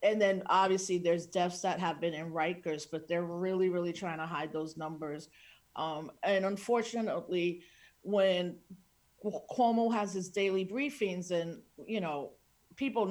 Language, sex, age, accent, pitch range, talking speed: English, female, 50-69, American, 170-210 Hz, 145 wpm